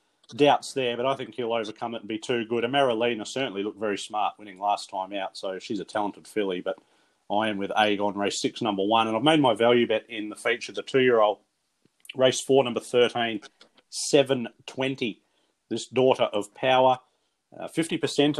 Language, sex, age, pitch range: English, male, 30-49, 105-135 Hz